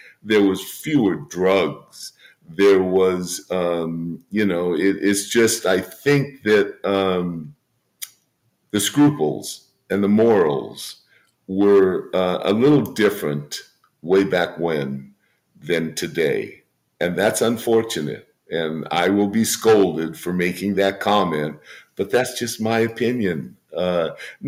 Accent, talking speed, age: American, 120 wpm, 50-69